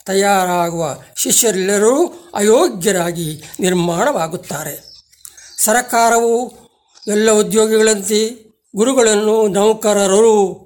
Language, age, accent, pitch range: Kannada, 60-79, native, 185-230 Hz